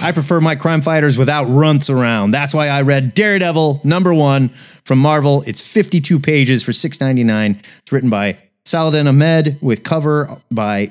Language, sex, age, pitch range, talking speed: English, male, 30-49, 140-185 Hz, 165 wpm